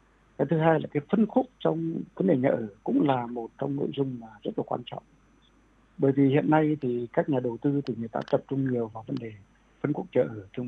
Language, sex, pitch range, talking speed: Vietnamese, male, 125-160 Hz, 260 wpm